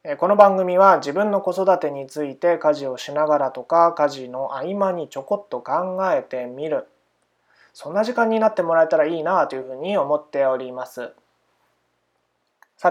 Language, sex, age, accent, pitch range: Japanese, male, 20-39, native, 130-190 Hz